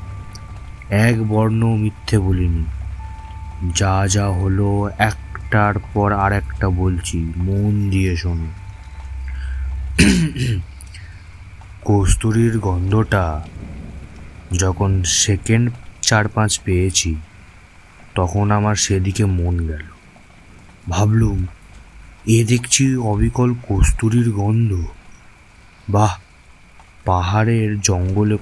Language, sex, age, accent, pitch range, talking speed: Bengali, male, 30-49, native, 90-105 Hz, 60 wpm